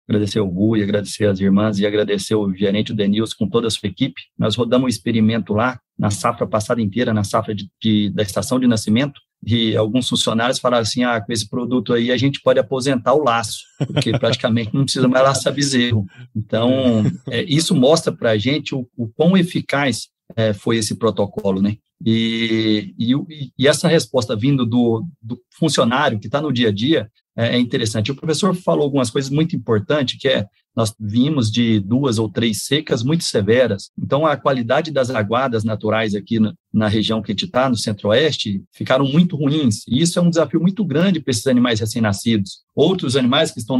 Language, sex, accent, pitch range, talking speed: Portuguese, male, Brazilian, 110-140 Hz, 195 wpm